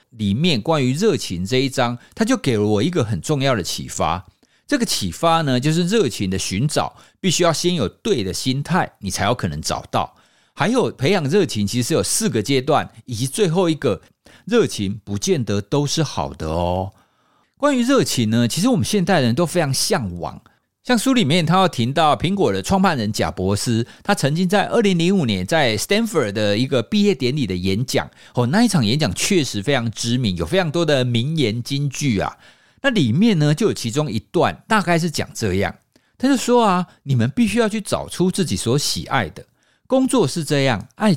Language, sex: Chinese, male